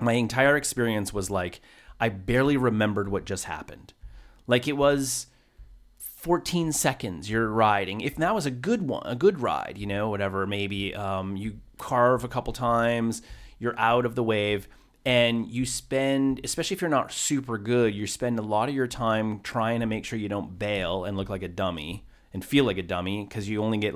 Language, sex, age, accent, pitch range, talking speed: English, male, 30-49, American, 100-135 Hz, 200 wpm